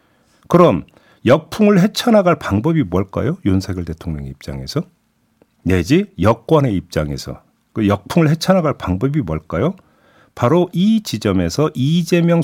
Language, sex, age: Korean, male, 50-69